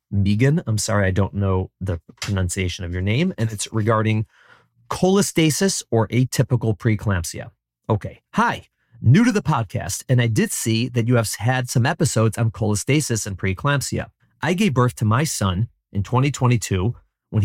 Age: 40-59